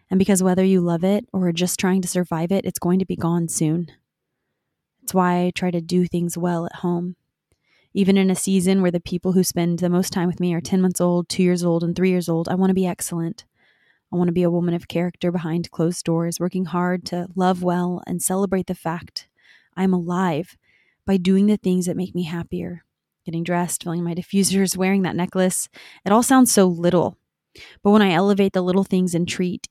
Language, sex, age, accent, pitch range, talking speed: English, female, 20-39, American, 170-190 Hz, 225 wpm